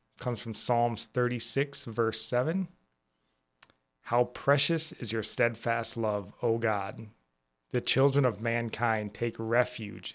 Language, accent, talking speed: English, American, 120 wpm